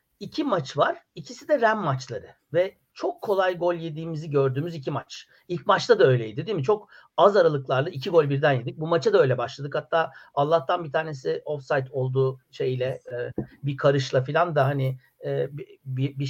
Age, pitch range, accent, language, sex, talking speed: 60-79, 135-205 Hz, native, Turkish, male, 170 wpm